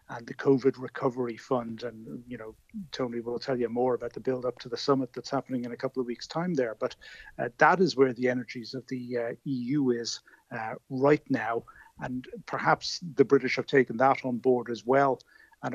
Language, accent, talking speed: English, British, 215 wpm